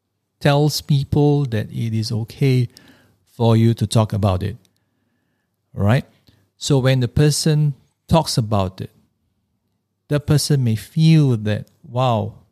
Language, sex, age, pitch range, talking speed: English, male, 50-69, 110-145 Hz, 125 wpm